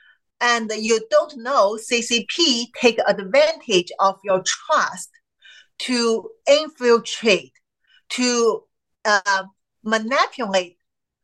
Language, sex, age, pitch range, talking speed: English, female, 40-59, 205-265 Hz, 80 wpm